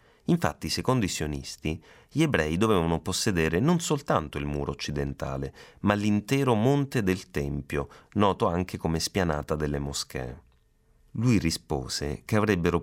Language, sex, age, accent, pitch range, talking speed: Italian, male, 30-49, native, 75-110 Hz, 130 wpm